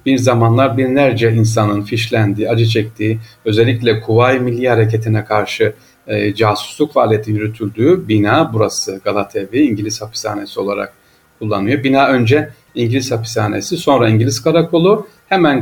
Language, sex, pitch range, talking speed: Turkish, male, 110-135 Hz, 120 wpm